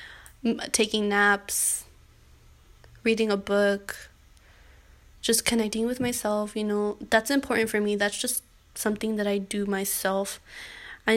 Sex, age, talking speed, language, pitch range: female, 10-29, 125 wpm, English, 205-225 Hz